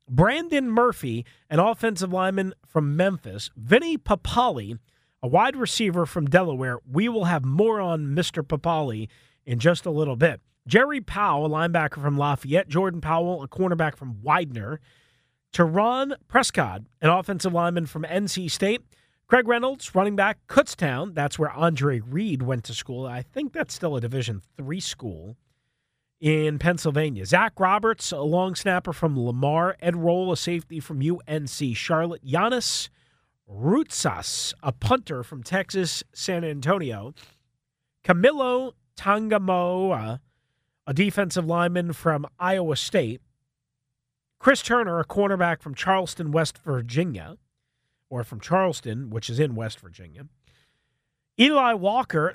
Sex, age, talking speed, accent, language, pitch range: male, 40-59, 135 wpm, American, English, 130-190 Hz